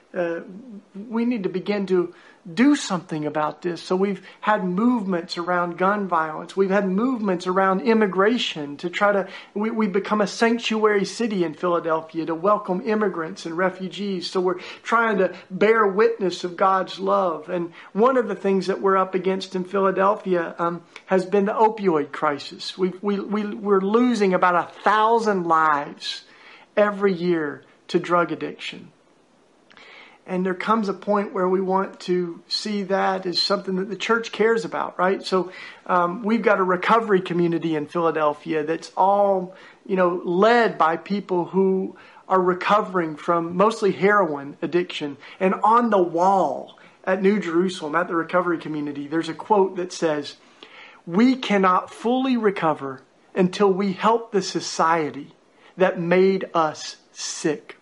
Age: 50-69